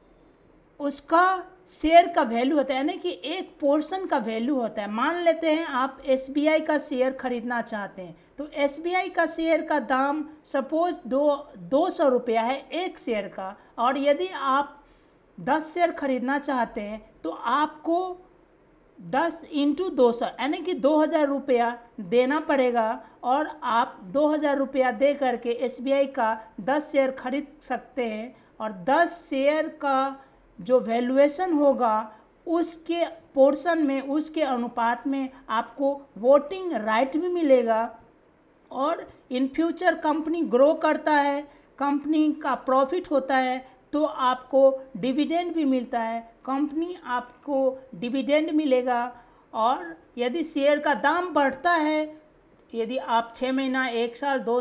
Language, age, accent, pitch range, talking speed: Hindi, 50-69, native, 245-305 Hz, 140 wpm